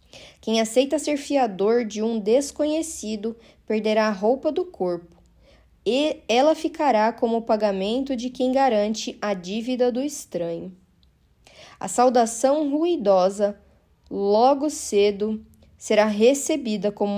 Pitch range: 200-265 Hz